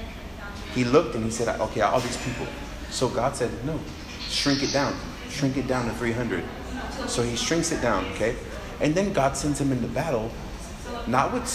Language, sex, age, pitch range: English, male, 30-49, 110-135 Hz